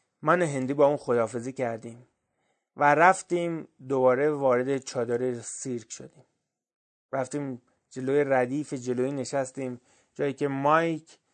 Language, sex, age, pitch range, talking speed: Persian, male, 30-49, 130-165 Hz, 115 wpm